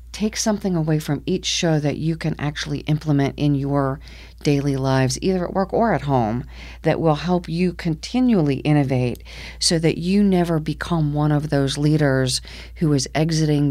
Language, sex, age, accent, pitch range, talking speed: English, female, 40-59, American, 130-165 Hz, 170 wpm